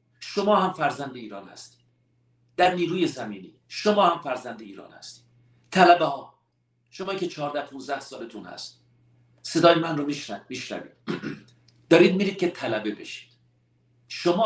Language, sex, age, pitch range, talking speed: Persian, male, 50-69, 110-170 Hz, 135 wpm